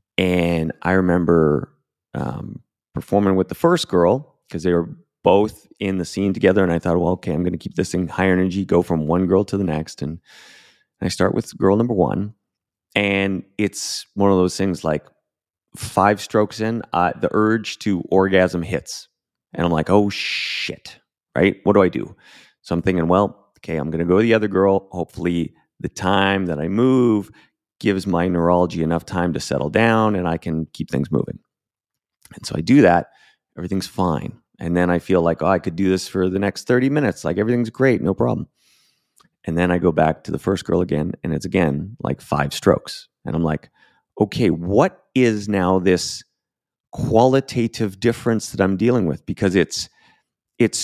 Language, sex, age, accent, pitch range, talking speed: English, male, 30-49, American, 90-105 Hz, 190 wpm